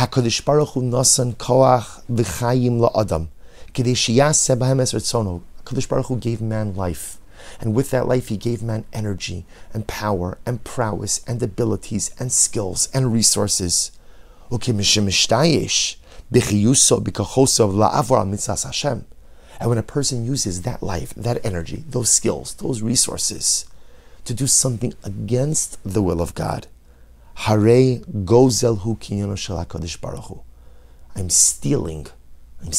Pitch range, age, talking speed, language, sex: 85-125 Hz, 30-49, 135 wpm, English, male